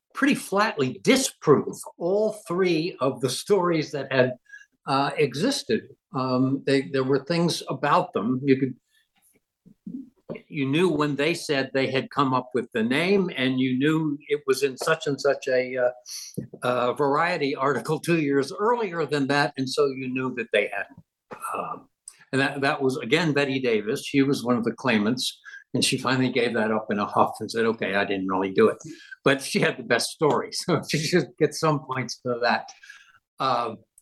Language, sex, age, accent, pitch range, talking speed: English, male, 60-79, American, 120-165 Hz, 185 wpm